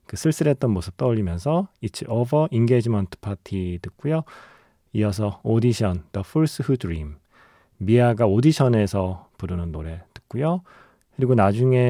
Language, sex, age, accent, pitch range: Korean, male, 30-49, native, 95-130 Hz